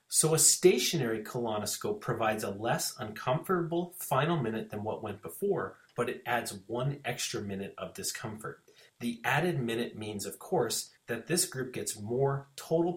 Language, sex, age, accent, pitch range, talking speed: English, male, 30-49, American, 115-170 Hz, 155 wpm